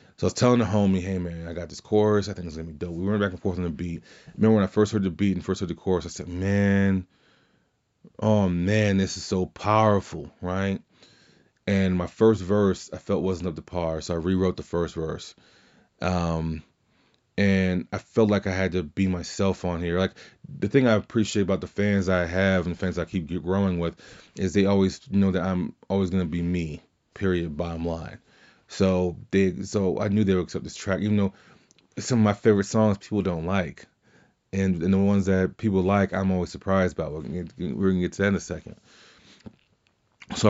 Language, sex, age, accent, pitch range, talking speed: English, male, 20-39, American, 90-100 Hz, 225 wpm